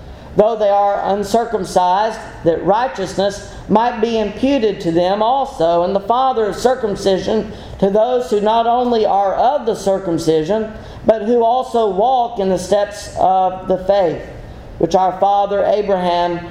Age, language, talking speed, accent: 40-59, English, 145 wpm, American